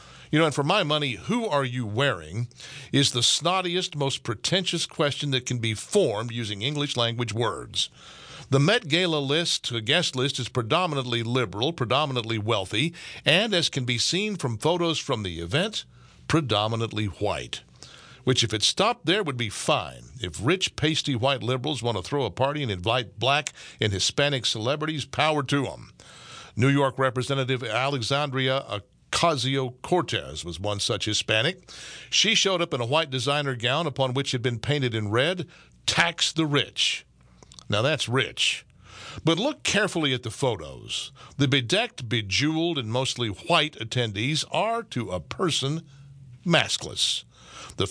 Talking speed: 155 wpm